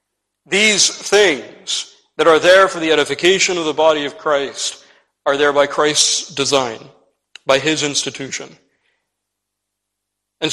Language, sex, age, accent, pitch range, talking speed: English, male, 40-59, American, 135-160 Hz, 125 wpm